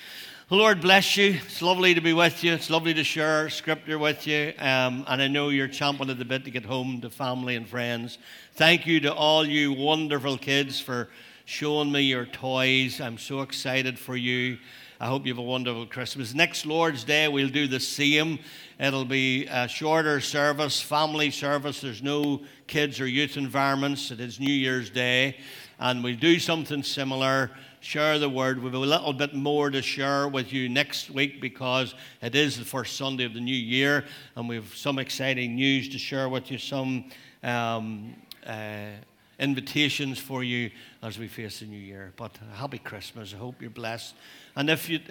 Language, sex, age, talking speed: English, male, 60-79, 190 wpm